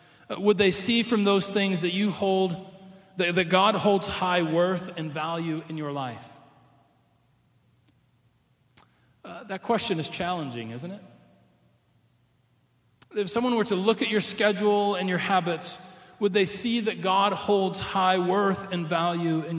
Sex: male